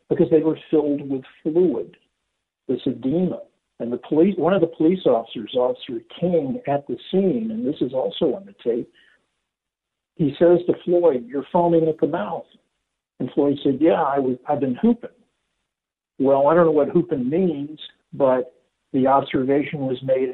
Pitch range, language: 130-185 Hz, English